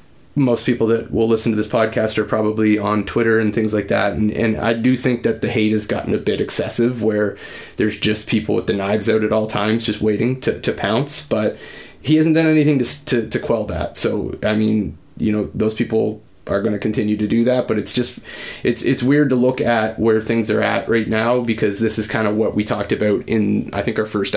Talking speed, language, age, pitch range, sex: 240 wpm, English, 20-39, 105-120 Hz, male